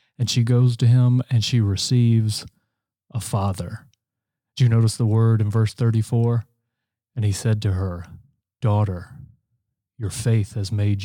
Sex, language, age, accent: male, English, 30-49, American